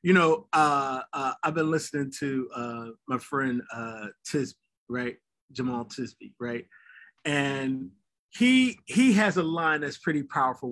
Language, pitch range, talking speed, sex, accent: English, 130-160 Hz, 145 wpm, male, American